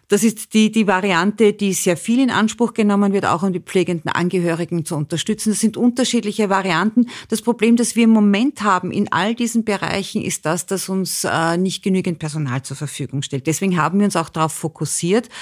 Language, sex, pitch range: German, female, 170-210 Hz